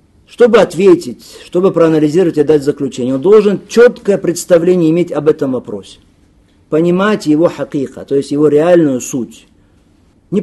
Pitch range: 150-205 Hz